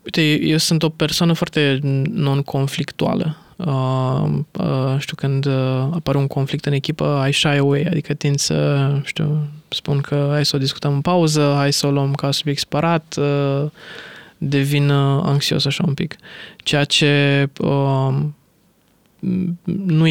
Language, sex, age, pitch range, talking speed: Romanian, male, 20-39, 140-165 Hz, 150 wpm